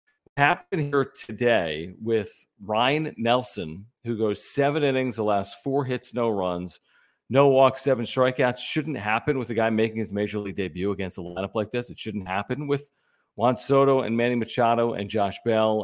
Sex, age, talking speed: male, 40-59, 180 wpm